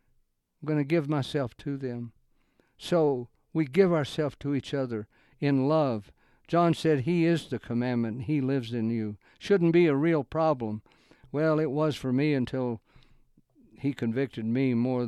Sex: male